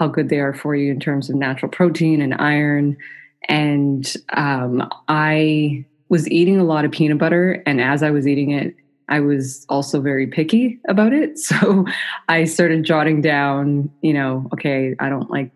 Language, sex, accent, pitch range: English, female, American, 140-165 Hz